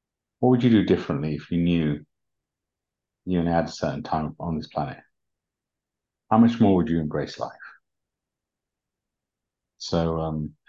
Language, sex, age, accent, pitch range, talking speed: English, male, 50-69, British, 80-95 Hz, 145 wpm